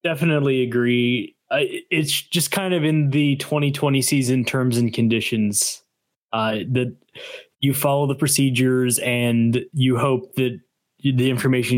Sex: male